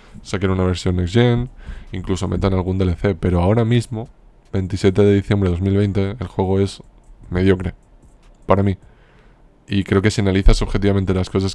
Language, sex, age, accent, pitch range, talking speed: Spanish, male, 20-39, Spanish, 90-100 Hz, 160 wpm